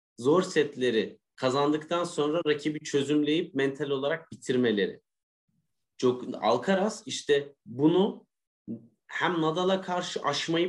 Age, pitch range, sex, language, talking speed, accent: 30-49, 125-170 Hz, male, Turkish, 95 wpm, native